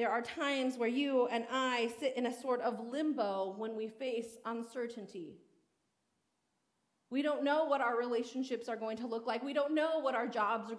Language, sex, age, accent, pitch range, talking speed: English, female, 30-49, American, 220-280 Hz, 195 wpm